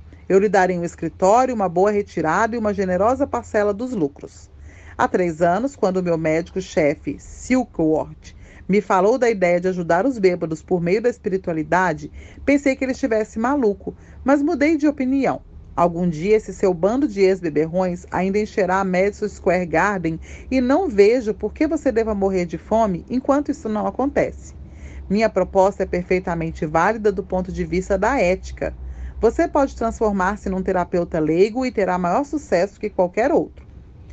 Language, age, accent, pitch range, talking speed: Portuguese, 40-59, Brazilian, 175-230 Hz, 165 wpm